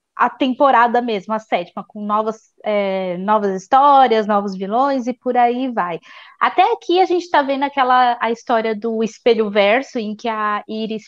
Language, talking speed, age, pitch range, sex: Portuguese, 170 wpm, 20-39, 220-265 Hz, female